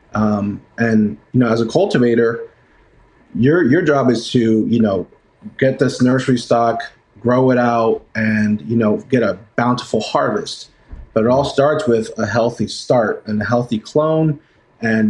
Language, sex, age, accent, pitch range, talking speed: English, male, 30-49, American, 110-135 Hz, 165 wpm